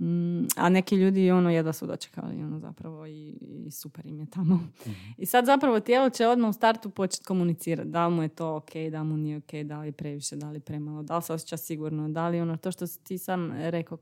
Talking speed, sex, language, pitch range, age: 230 wpm, female, Croatian, 155-185 Hz, 20-39